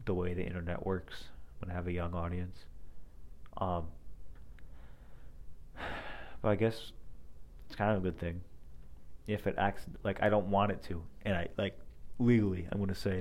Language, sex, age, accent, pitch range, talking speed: English, male, 30-49, American, 75-100 Hz, 175 wpm